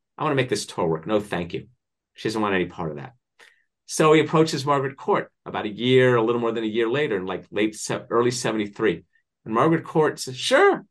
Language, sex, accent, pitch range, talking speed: English, male, American, 105-145 Hz, 230 wpm